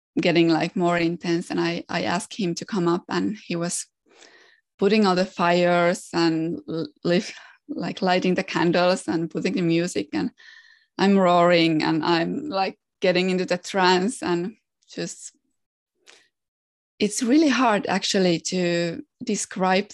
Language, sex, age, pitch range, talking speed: English, female, 20-39, 170-205 Hz, 140 wpm